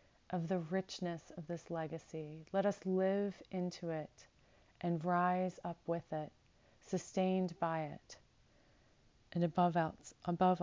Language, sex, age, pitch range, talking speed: English, female, 30-49, 165-195 Hz, 125 wpm